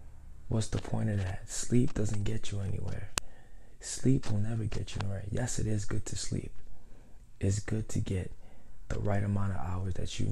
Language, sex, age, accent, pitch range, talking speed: English, male, 20-39, American, 100-110 Hz, 190 wpm